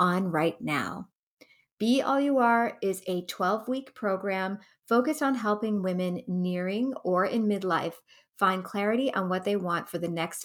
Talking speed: 160 wpm